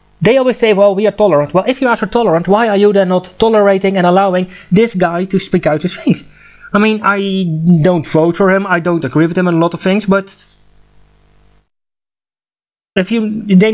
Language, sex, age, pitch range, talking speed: English, male, 30-49, 180-220 Hz, 205 wpm